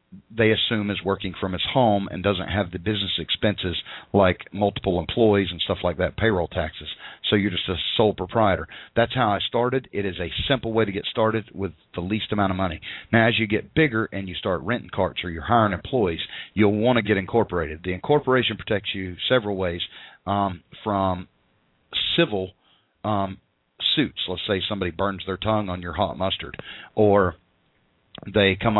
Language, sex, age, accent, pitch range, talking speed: English, male, 50-69, American, 90-105 Hz, 185 wpm